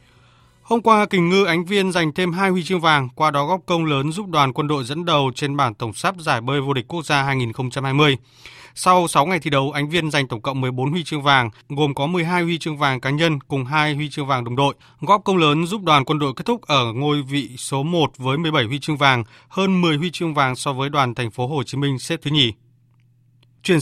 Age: 20-39